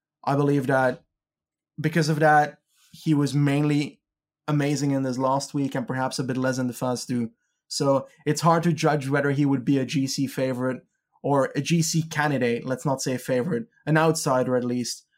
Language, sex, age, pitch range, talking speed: English, male, 20-39, 135-160 Hz, 190 wpm